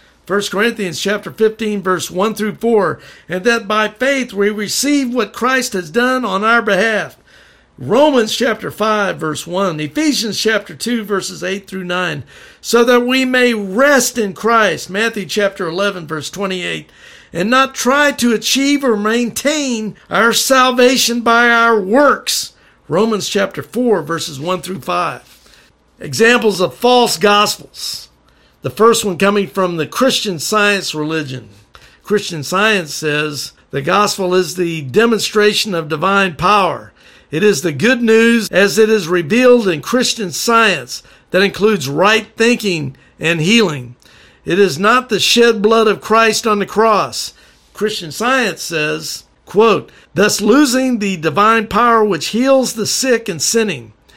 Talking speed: 145 wpm